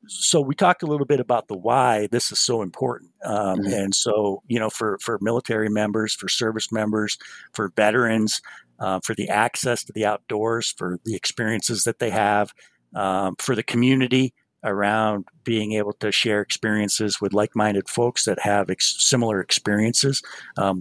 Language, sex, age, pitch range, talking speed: English, male, 50-69, 100-120 Hz, 165 wpm